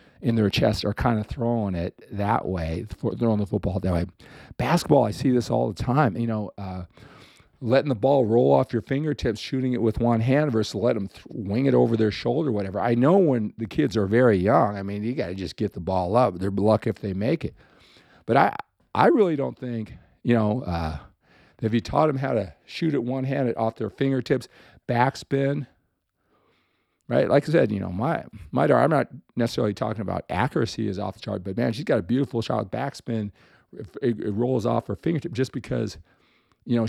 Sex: male